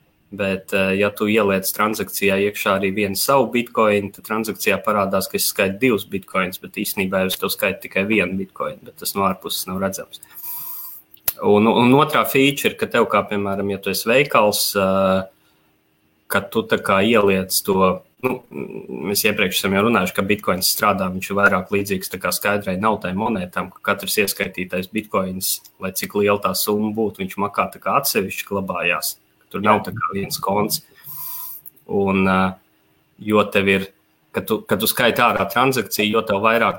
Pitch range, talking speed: 95-105 Hz, 160 wpm